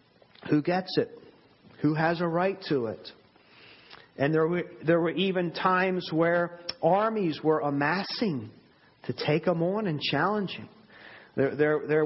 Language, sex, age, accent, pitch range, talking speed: English, male, 40-59, American, 145-185 Hz, 150 wpm